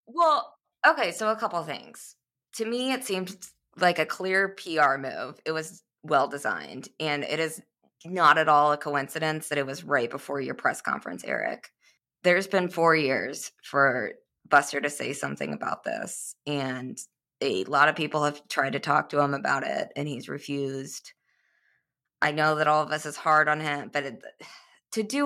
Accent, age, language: American, 20-39, English